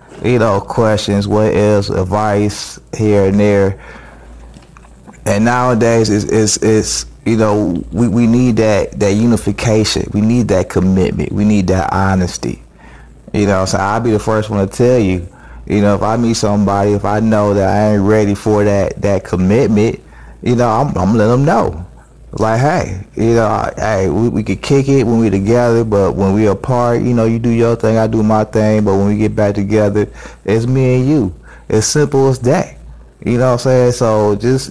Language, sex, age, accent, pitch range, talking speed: English, male, 30-49, American, 100-115 Hz, 195 wpm